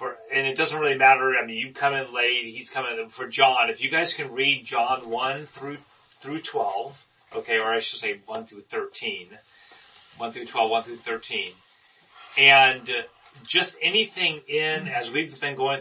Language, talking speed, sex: English, 180 wpm, male